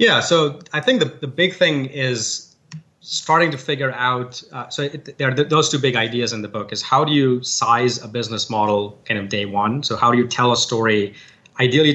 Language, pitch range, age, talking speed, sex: English, 110-130 Hz, 30-49, 235 wpm, male